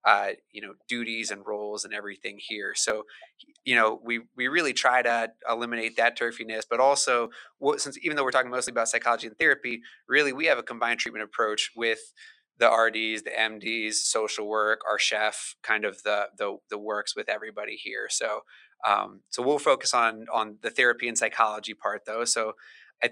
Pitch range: 110-120 Hz